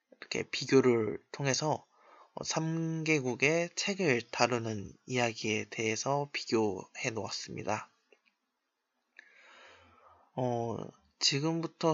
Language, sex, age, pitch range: Korean, male, 20-39, 120-155 Hz